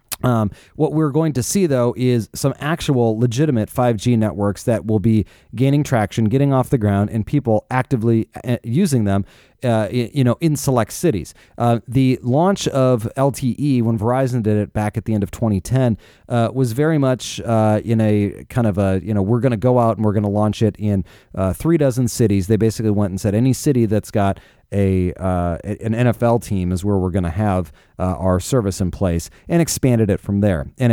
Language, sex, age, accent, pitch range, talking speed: English, male, 30-49, American, 105-125 Hz, 210 wpm